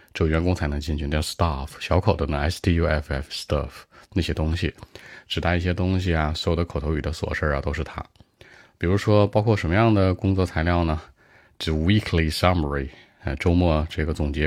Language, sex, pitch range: Chinese, male, 75-95 Hz